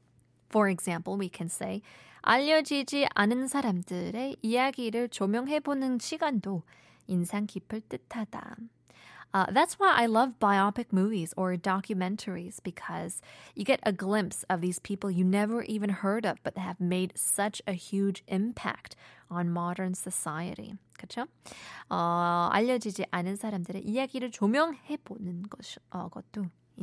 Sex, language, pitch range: female, Korean, 185-240 Hz